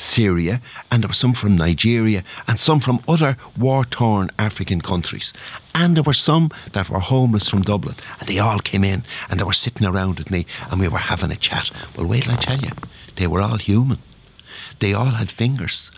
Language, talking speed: English, 205 wpm